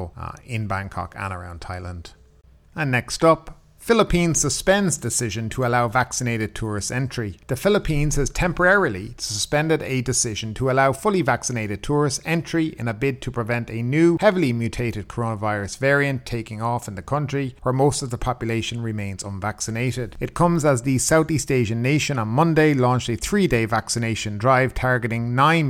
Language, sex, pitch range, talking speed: English, male, 110-135 Hz, 160 wpm